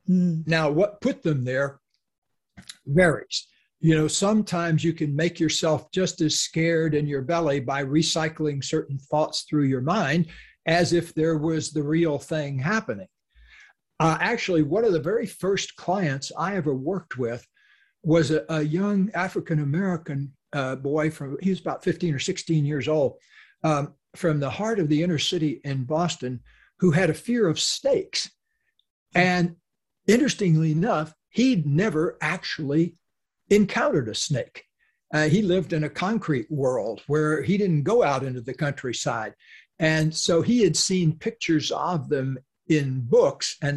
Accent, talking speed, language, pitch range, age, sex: American, 155 wpm, English, 150-180 Hz, 60-79, male